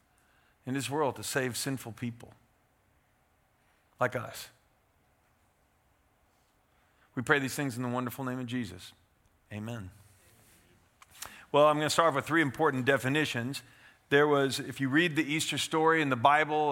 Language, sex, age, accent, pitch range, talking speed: English, male, 50-69, American, 120-145 Hz, 145 wpm